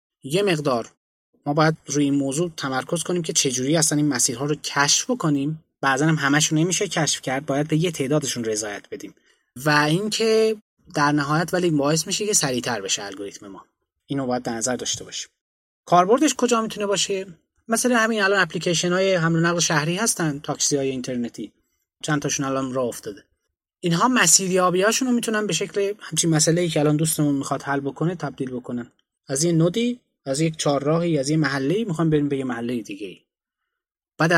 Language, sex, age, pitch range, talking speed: Persian, male, 20-39, 140-180 Hz, 180 wpm